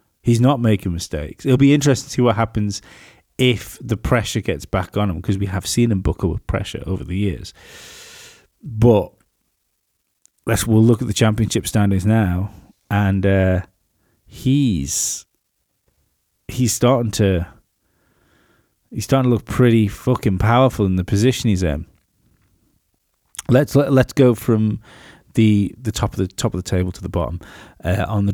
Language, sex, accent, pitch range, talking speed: English, male, British, 95-125 Hz, 160 wpm